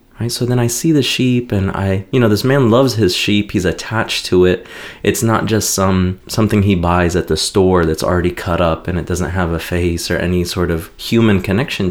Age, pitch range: 30-49, 100-135 Hz